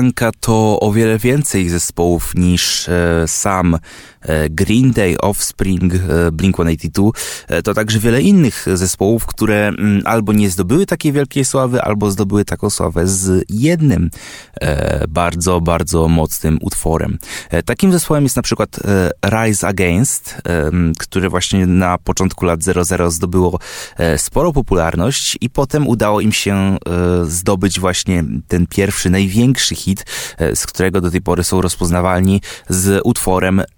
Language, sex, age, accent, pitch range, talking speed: Polish, male, 20-39, native, 85-110 Hz, 125 wpm